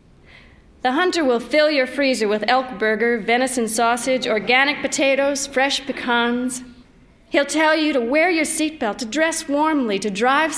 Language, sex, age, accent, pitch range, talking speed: English, female, 40-59, American, 215-280 Hz, 155 wpm